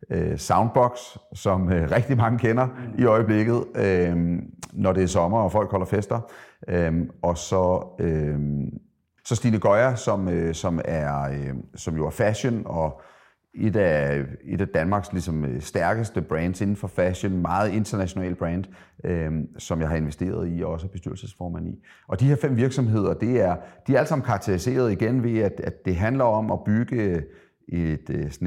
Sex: male